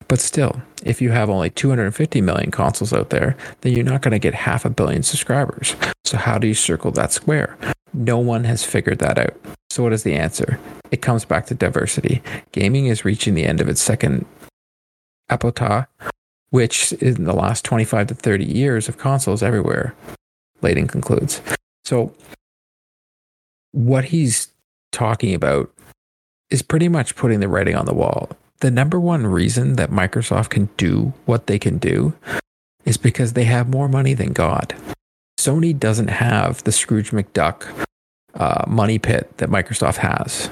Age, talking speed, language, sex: 40-59, 165 wpm, English, male